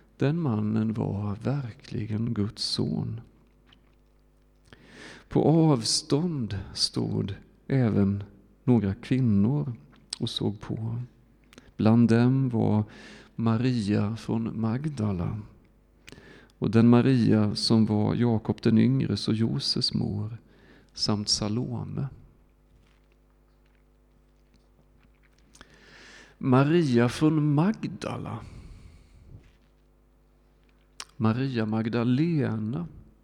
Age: 40-59